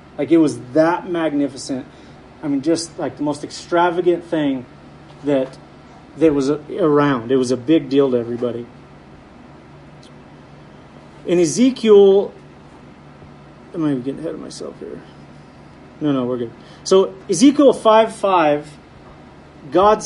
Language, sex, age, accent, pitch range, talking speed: English, male, 30-49, American, 135-190 Hz, 125 wpm